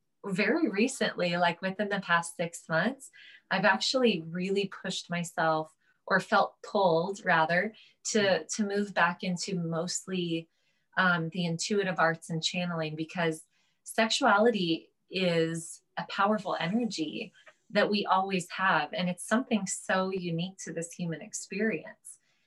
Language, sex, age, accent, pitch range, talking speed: English, female, 20-39, American, 165-200 Hz, 130 wpm